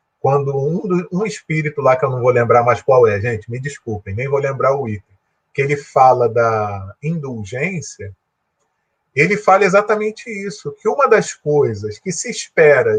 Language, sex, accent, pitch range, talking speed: Portuguese, male, Brazilian, 130-215 Hz, 170 wpm